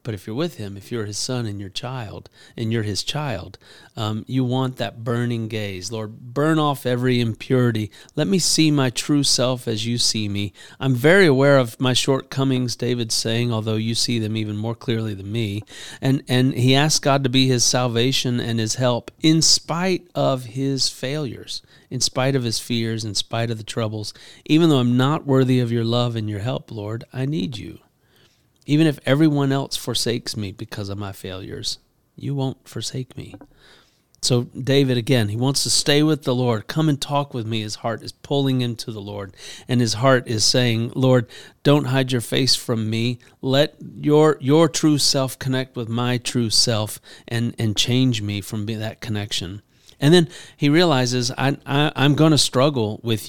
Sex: male